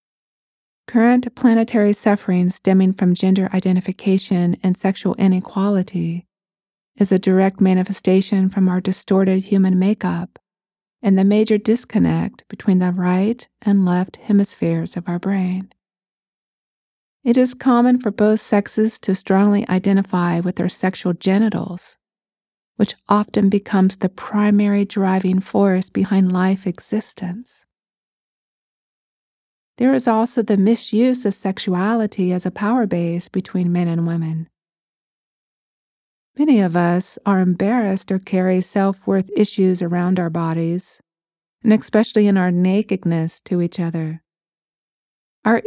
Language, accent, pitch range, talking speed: English, American, 180-210 Hz, 120 wpm